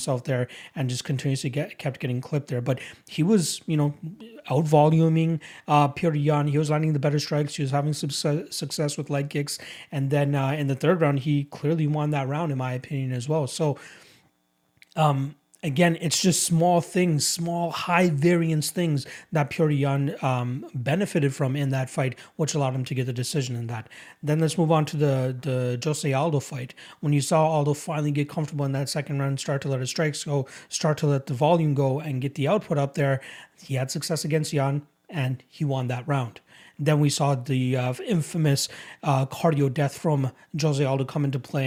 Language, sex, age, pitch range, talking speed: English, male, 30-49, 135-160 Hz, 210 wpm